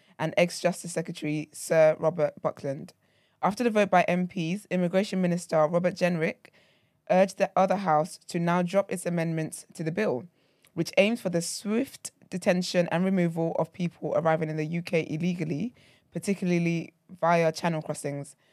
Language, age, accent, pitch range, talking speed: English, 20-39, British, 160-190 Hz, 150 wpm